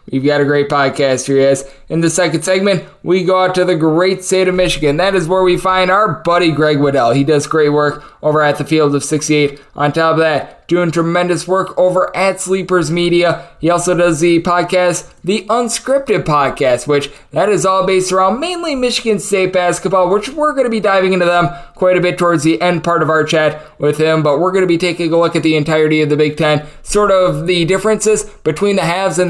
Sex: male